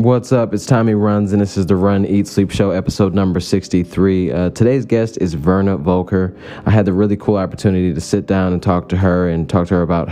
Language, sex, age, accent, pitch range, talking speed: English, male, 20-39, American, 85-100 Hz, 235 wpm